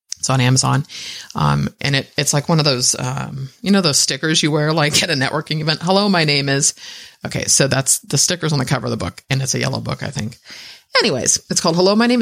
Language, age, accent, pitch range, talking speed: English, 30-49, American, 135-175 Hz, 245 wpm